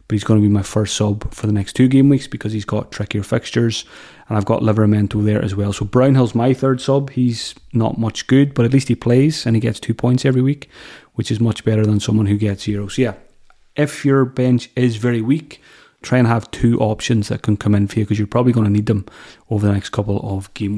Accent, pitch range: British, 110-130 Hz